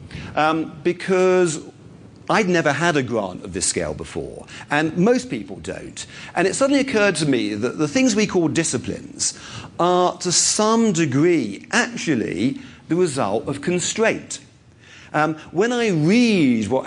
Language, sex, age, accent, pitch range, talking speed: English, male, 50-69, British, 135-185 Hz, 145 wpm